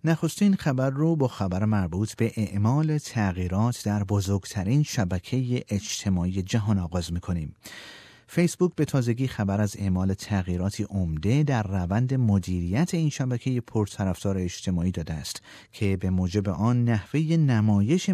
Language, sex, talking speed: Persian, male, 130 wpm